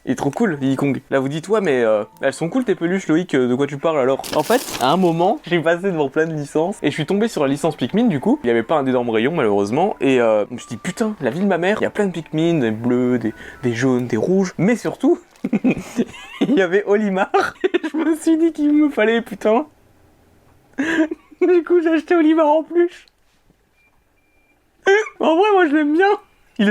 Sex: male